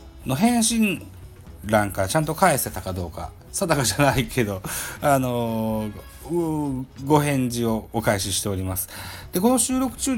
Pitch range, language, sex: 95-130 Hz, Japanese, male